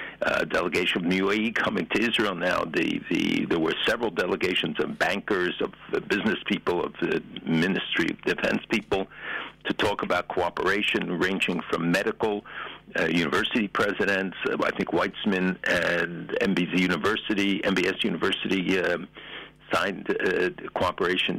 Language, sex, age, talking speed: English, male, 60-79, 135 wpm